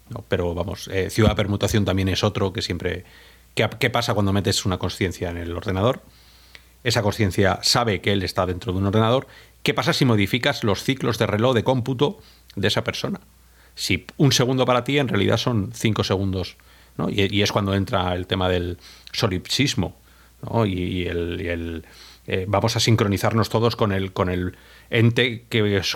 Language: Spanish